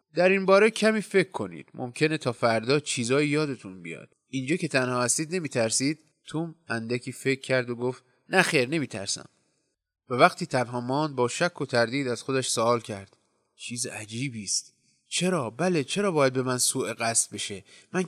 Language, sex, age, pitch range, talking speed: Persian, male, 30-49, 115-165 Hz, 175 wpm